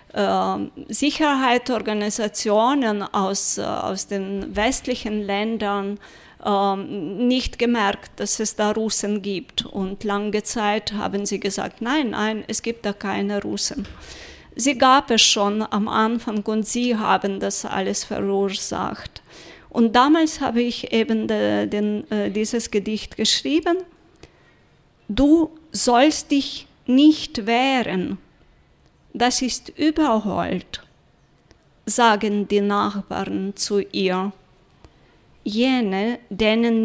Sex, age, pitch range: female, 30-49, 200-245 Hz